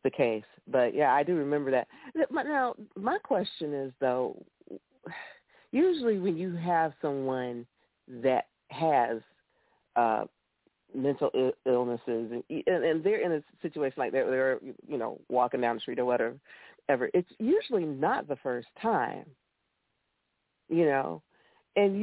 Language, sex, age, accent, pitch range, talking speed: English, female, 50-69, American, 150-220 Hz, 135 wpm